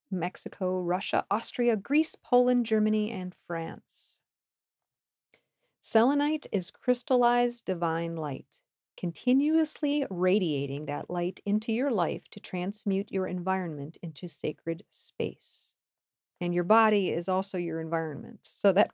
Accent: American